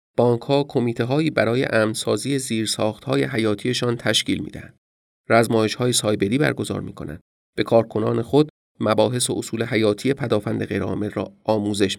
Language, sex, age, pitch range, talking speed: Persian, male, 30-49, 100-125 Hz, 120 wpm